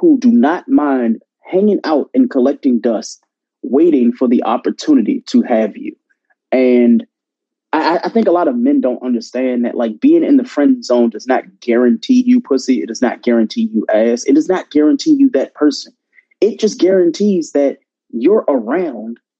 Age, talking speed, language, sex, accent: 30-49, 175 wpm, English, male, American